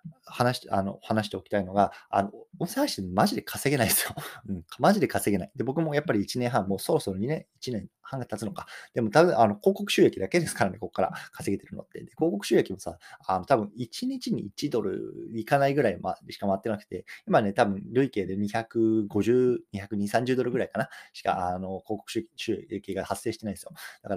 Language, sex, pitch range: Japanese, male, 100-160 Hz